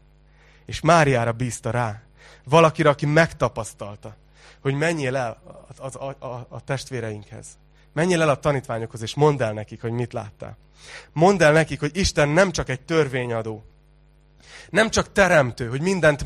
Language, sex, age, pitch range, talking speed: Hungarian, male, 30-49, 130-170 Hz, 140 wpm